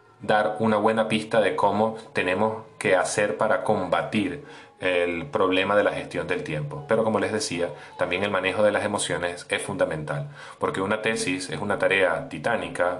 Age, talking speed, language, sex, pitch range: 30-49, 170 wpm, Spanish, male, 95-110 Hz